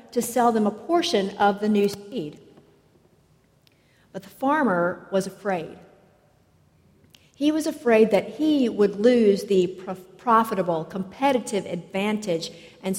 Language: English